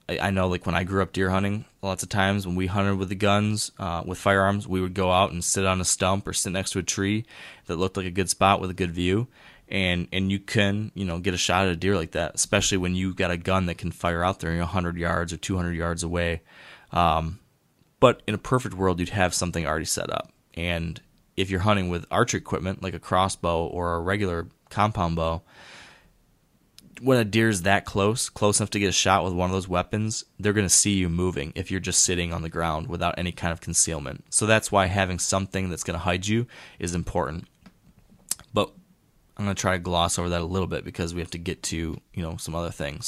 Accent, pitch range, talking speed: American, 85-100 Hz, 240 wpm